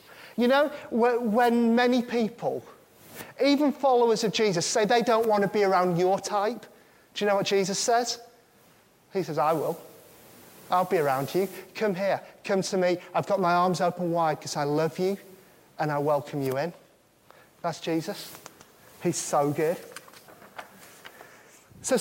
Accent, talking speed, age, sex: British, 160 wpm, 30-49, male